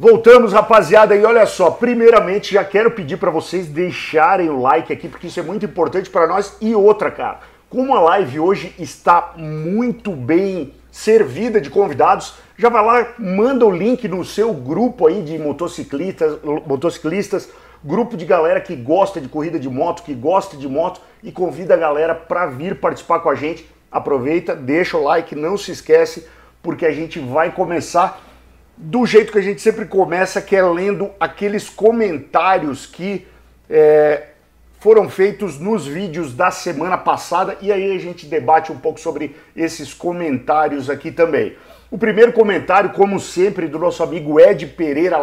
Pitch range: 160-205 Hz